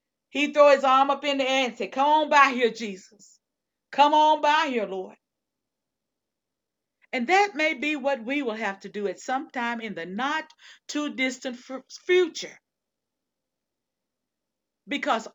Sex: female